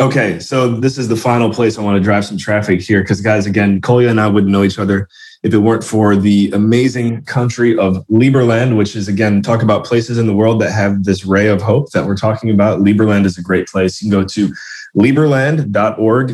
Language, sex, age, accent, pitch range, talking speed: English, male, 20-39, American, 95-115 Hz, 230 wpm